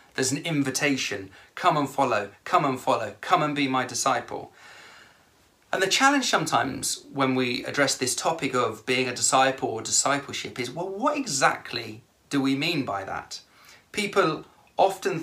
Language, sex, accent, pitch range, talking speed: English, male, British, 125-155 Hz, 160 wpm